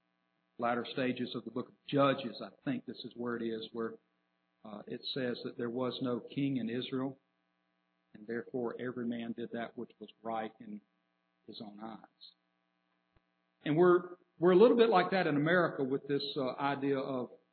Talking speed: 180 wpm